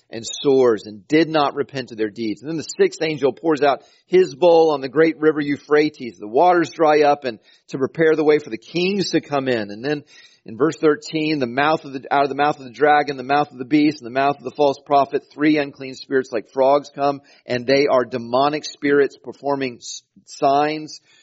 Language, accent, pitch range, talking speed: English, American, 105-145 Hz, 225 wpm